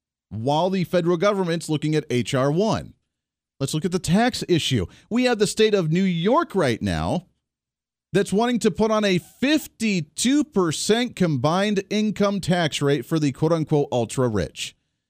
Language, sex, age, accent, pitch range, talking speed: English, male, 40-59, American, 135-195 Hz, 150 wpm